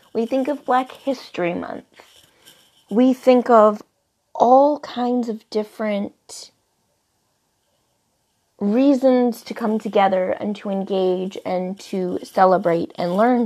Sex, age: female, 30-49